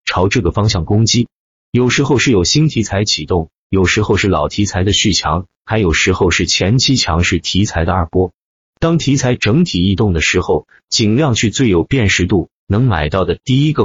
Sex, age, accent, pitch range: male, 30-49, native, 85-125 Hz